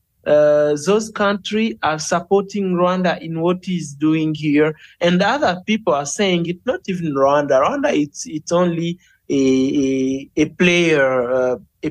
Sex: male